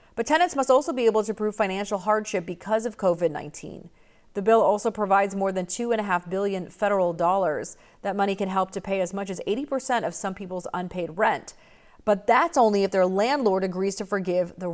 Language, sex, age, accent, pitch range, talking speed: English, female, 30-49, American, 180-220 Hz, 195 wpm